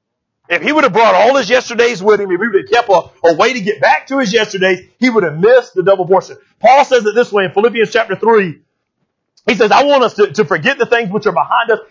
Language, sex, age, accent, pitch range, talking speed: English, male, 40-59, American, 185-240 Hz, 270 wpm